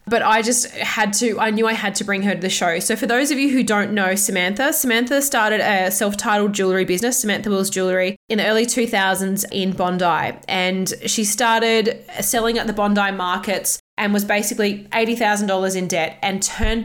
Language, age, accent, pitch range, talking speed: English, 20-39, Australian, 190-220 Hz, 200 wpm